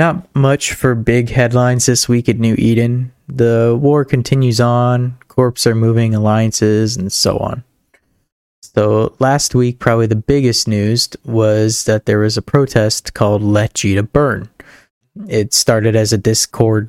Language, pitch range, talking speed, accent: English, 110-125 Hz, 155 wpm, American